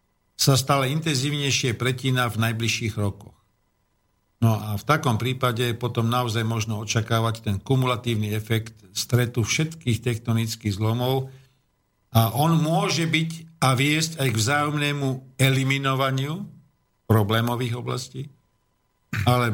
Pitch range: 115-155 Hz